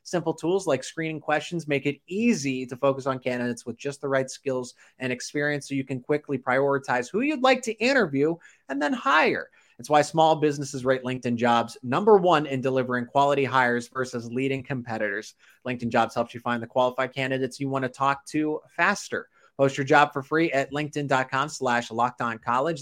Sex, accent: male, American